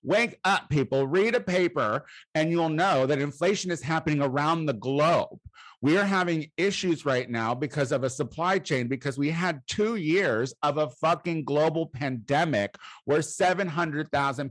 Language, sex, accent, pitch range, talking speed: English, male, American, 140-180 Hz, 160 wpm